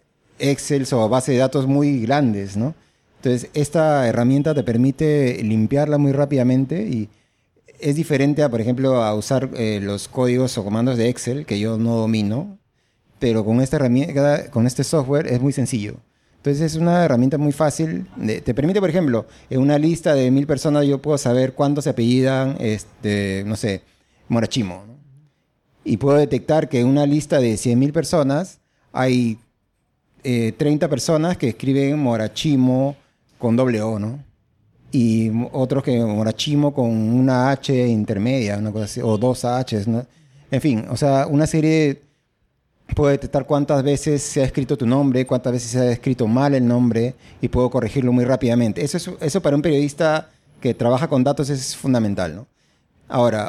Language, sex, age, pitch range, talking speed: Spanish, male, 30-49, 115-145 Hz, 165 wpm